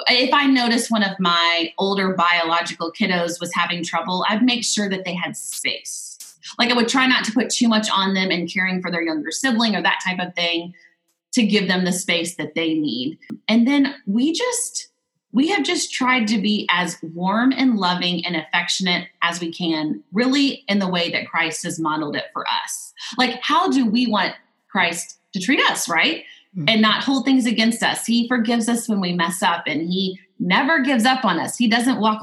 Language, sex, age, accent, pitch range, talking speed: English, female, 30-49, American, 175-250 Hz, 210 wpm